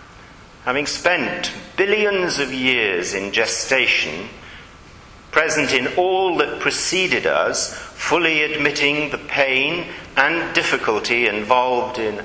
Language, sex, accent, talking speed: English, male, British, 105 wpm